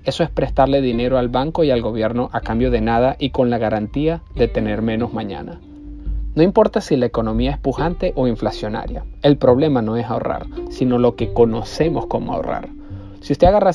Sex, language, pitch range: male, Spanish, 110-130 Hz